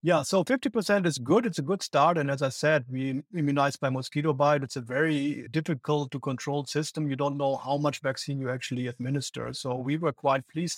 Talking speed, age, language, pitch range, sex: 215 wpm, 50-69, English, 135-165 Hz, male